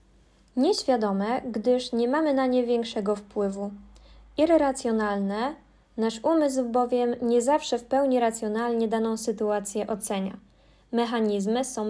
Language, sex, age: Polish, female, 20-39